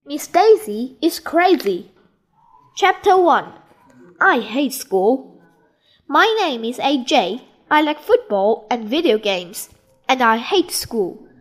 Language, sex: Chinese, female